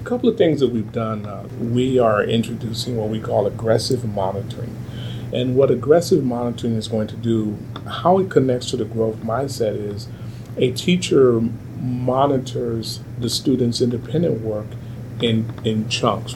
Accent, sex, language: American, male, English